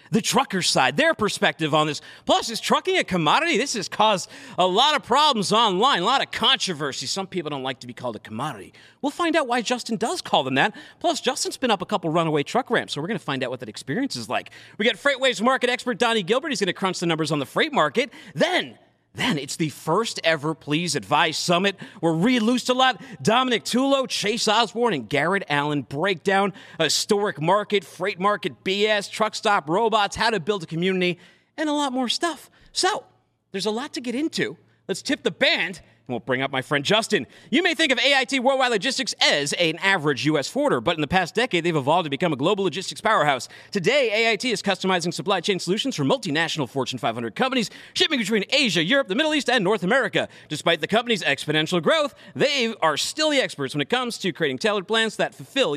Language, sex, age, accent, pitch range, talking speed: English, male, 40-59, American, 160-255 Hz, 220 wpm